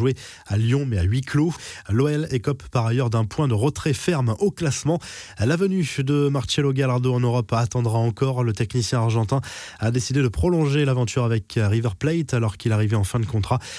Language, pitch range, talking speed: French, 115-140 Hz, 190 wpm